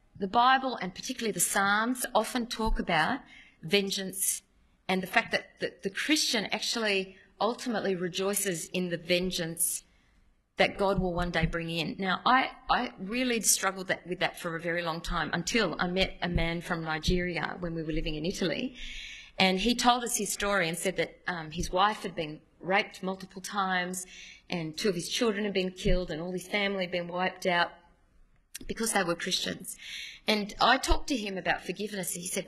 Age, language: 30-49, English